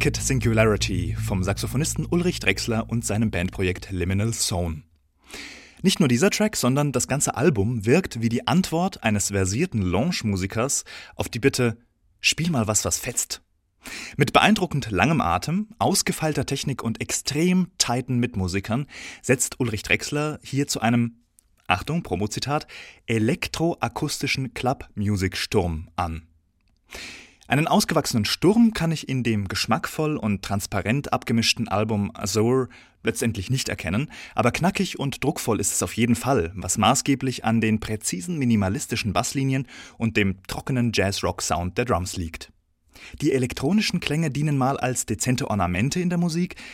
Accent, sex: German, male